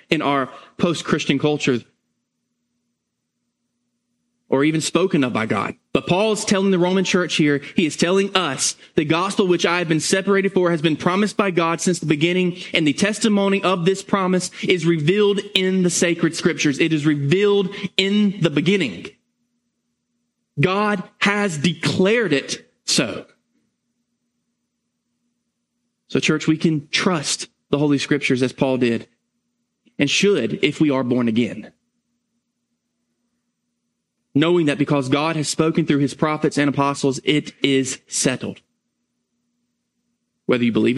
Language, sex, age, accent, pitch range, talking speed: English, male, 20-39, American, 145-235 Hz, 140 wpm